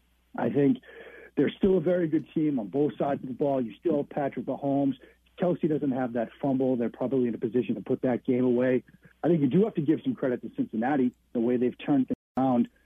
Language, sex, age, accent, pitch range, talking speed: English, male, 50-69, American, 125-160 Hz, 235 wpm